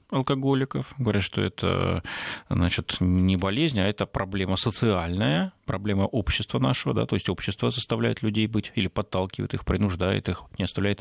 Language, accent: Russian, native